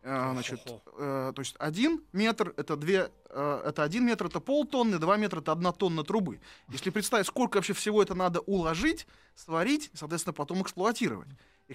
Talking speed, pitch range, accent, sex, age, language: 160 wpm, 140-185 Hz, native, male, 20-39, Russian